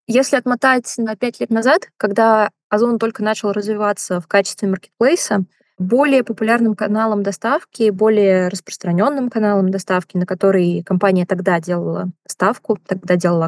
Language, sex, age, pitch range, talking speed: Russian, female, 20-39, 190-225 Hz, 135 wpm